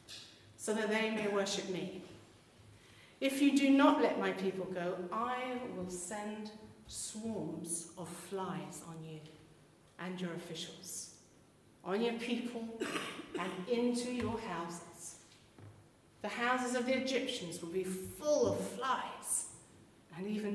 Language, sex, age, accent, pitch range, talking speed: English, female, 40-59, British, 170-230 Hz, 130 wpm